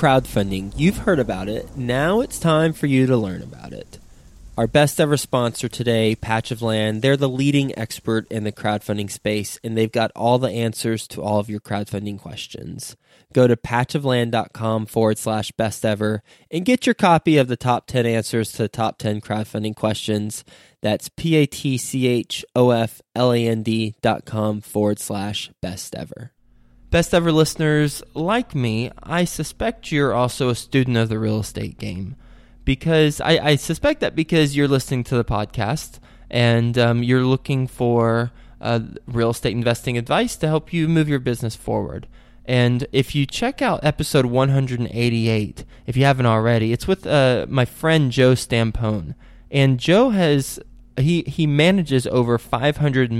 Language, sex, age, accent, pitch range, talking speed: English, male, 20-39, American, 110-145 Hz, 160 wpm